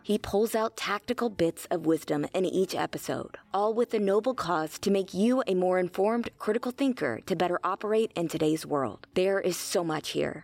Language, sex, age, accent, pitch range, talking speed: English, female, 20-39, American, 165-220 Hz, 195 wpm